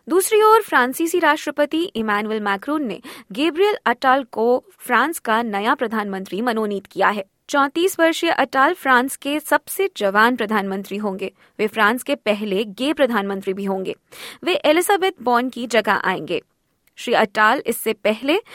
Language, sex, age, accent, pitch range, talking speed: Hindi, female, 20-39, native, 215-300 Hz, 140 wpm